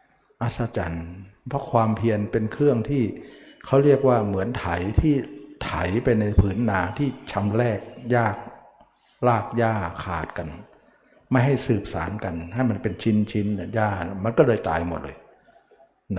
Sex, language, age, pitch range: male, Thai, 60-79, 100-125 Hz